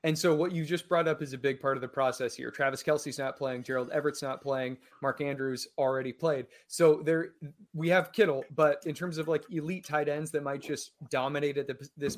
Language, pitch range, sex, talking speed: English, 135-160 Hz, male, 225 wpm